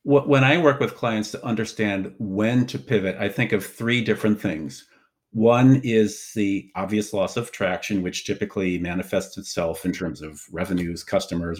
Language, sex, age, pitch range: English, male, 50-69, 95-120 Hz